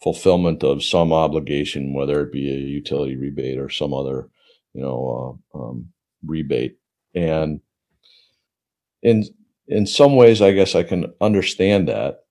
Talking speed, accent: 140 wpm, American